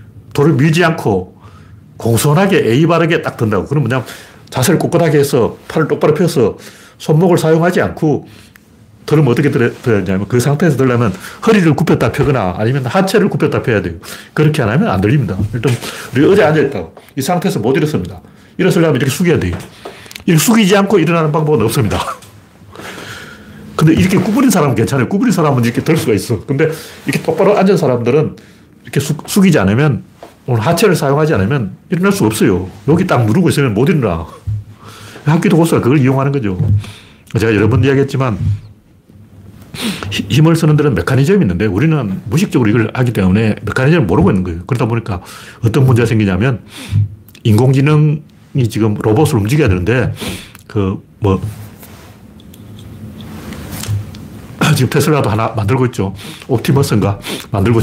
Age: 40-59